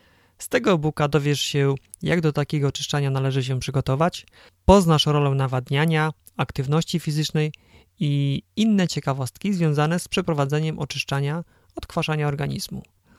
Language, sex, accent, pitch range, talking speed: Polish, male, native, 135-155 Hz, 120 wpm